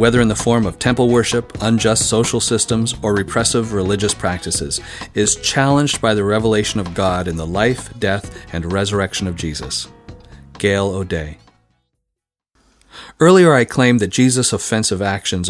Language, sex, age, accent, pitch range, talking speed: English, male, 40-59, American, 95-125 Hz, 145 wpm